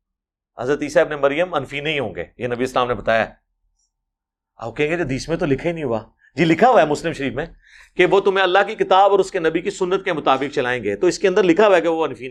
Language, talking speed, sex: Urdu, 275 wpm, male